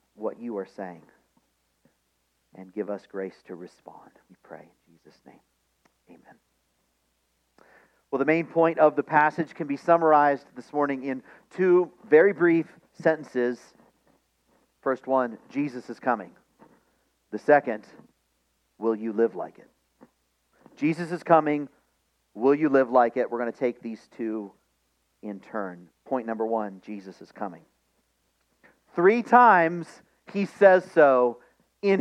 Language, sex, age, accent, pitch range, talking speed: English, male, 40-59, American, 110-165 Hz, 135 wpm